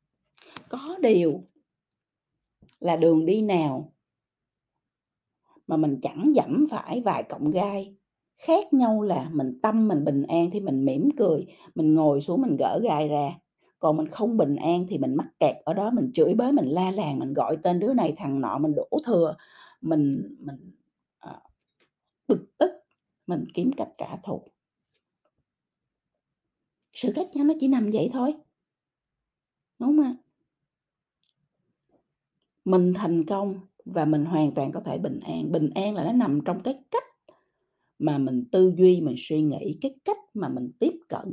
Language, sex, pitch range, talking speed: Vietnamese, female, 160-240 Hz, 165 wpm